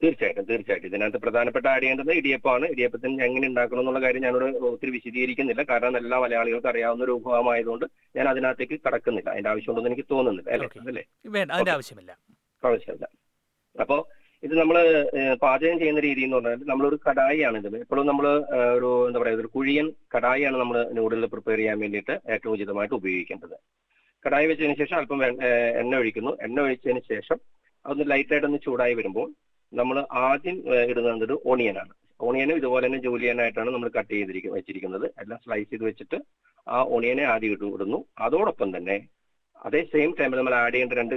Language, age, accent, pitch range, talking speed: Malayalam, 30-49, native, 115-140 Hz, 150 wpm